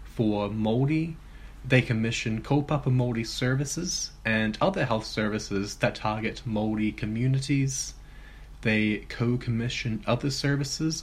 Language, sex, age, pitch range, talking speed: English, male, 20-39, 105-125 Hz, 100 wpm